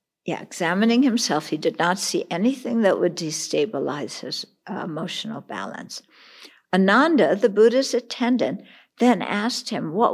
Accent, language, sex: American, English, female